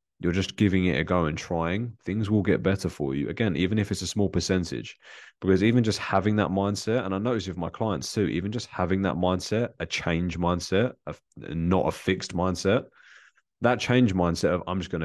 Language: English